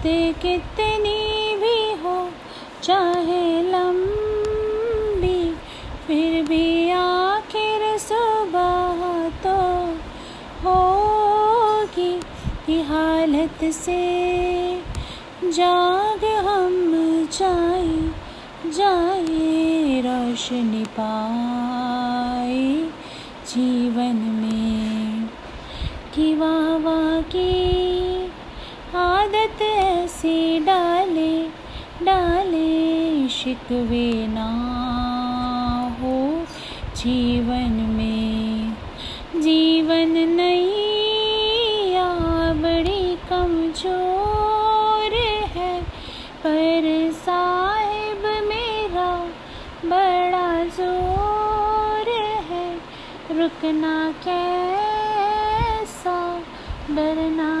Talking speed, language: 50 wpm, Hindi